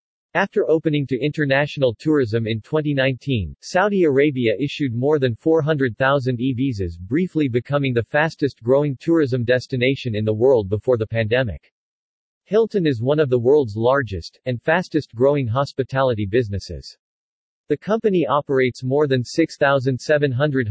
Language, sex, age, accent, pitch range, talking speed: English, male, 40-59, American, 120-150 Hz, 125 wpm